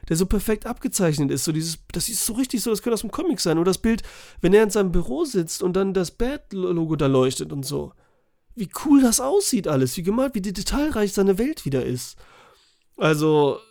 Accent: German